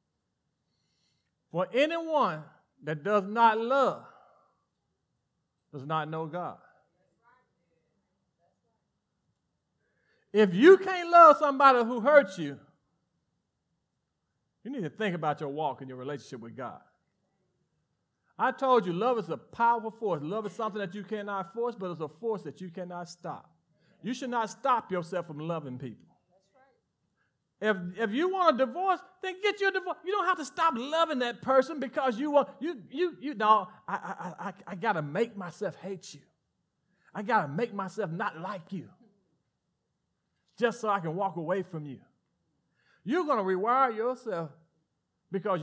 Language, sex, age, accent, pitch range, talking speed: English, male, 40-59, American, 170-255 Hz, 155 wpm